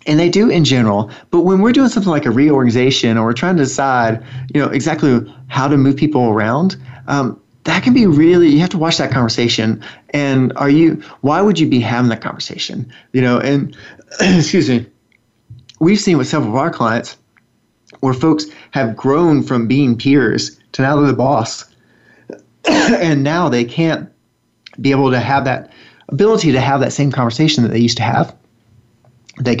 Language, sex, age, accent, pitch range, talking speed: English, male, 30-49, American, 120-155 Hz, 185 wpm